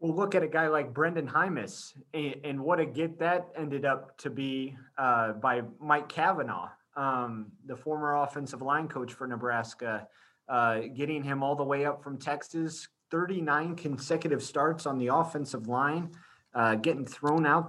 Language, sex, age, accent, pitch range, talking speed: English, male, 30-49, American, 125-155 Hz, 165 wpm